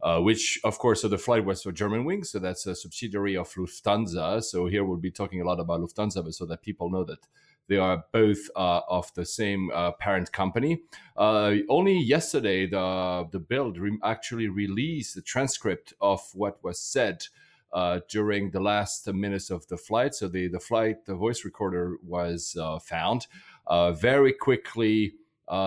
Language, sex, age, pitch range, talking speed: English, male, 40-59, 90-110 Hz, 185 wpm